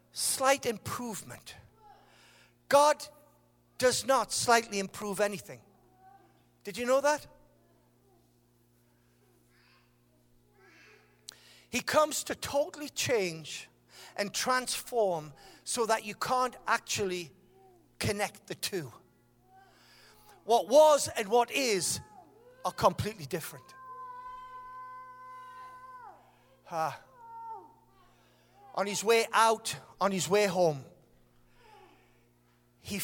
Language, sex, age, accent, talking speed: English, male, 50-69, British, 85 wpm